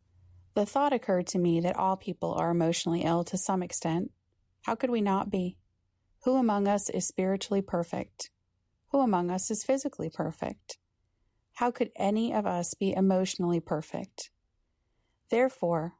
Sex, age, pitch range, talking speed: female, 40-59, 170-205 Hz, 150 wpm